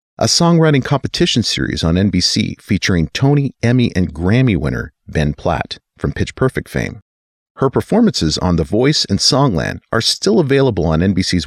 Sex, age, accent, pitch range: male, 40-59, American, 90-130 Hz